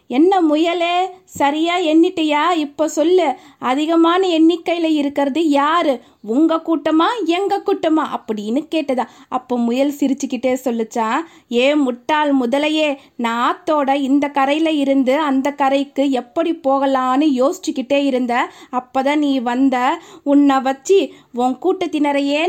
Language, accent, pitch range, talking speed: Tamil, native, 250-330 Hz, 110 wpm